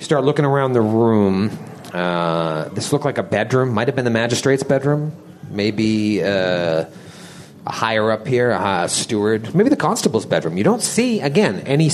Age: 40-59